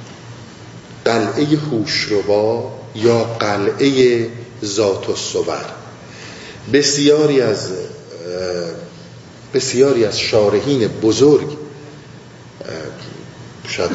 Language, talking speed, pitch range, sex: Persian, 55 wpm, 110-145 Hz, male